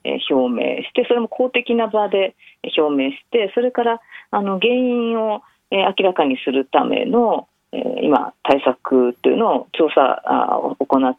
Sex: female